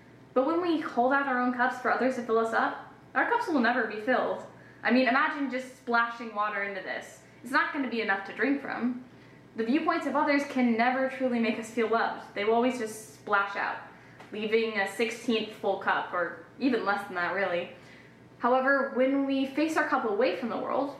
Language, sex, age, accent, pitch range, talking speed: English, female, 10-29, American, 200-250 Hz, 210 wpm